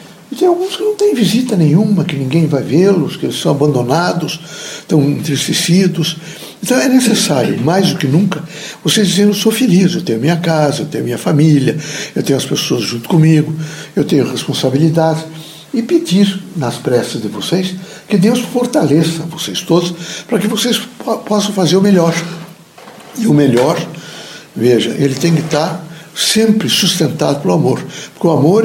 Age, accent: 60-79, Brazilian